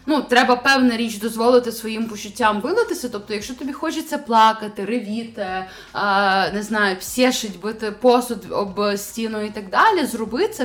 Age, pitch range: 20-39, 200-235 Hz